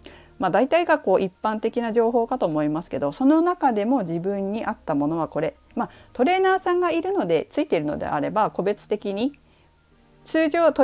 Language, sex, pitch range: Japanese, female, 170-275 Hz